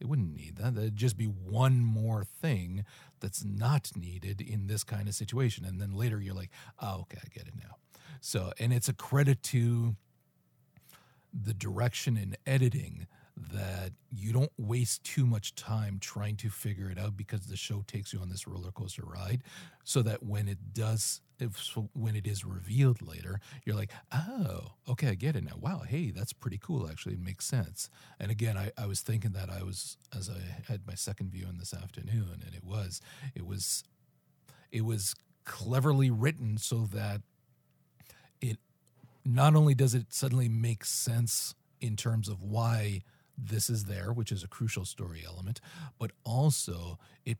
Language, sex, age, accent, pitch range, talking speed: English, male, 40-59, American, 100-125 Hz, 180 wpm